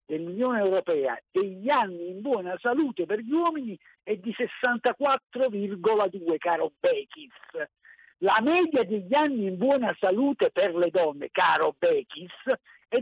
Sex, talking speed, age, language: male, 130 wpm, 50-69, Italian